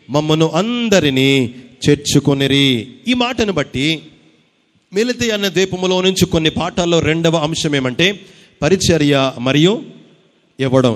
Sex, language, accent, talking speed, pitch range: male, Telugu, native, 100 wpm, 155-195 Hz